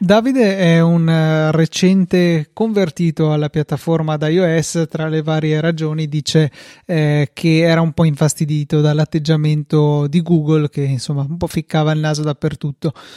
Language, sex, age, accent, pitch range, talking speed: Italian, male, 30-49, native, 155-180 Hz, 140 wpm